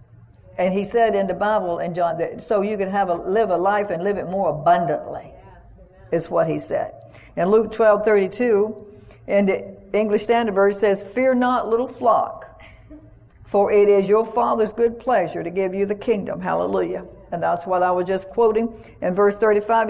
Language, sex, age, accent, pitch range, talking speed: English, female, 60-79, American, 190-230 Hz, 195 wpm